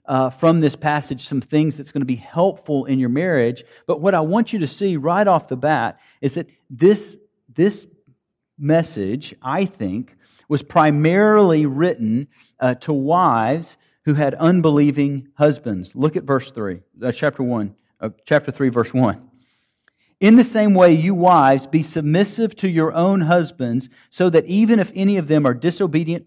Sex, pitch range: male, 135-180 Hz